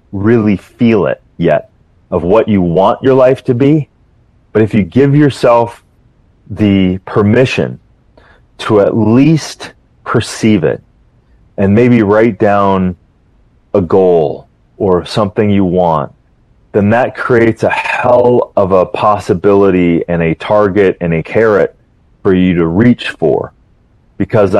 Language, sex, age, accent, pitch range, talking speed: English, male, 30-49, American, 100-125 Hz, 130 wpm